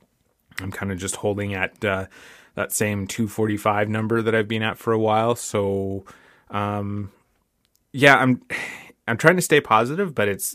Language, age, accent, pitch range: English, 20-39, American, 100-110 Hz